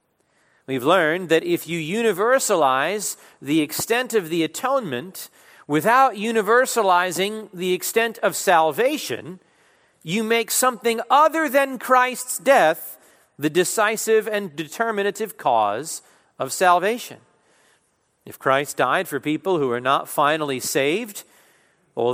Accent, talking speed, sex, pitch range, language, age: American, 115 wpm, male, 155-225 Hz, English, 40-59